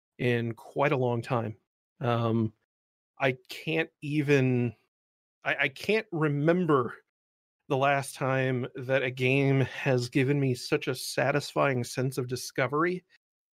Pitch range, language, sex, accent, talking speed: 125-155 Hz, English, male, American, 125 wpm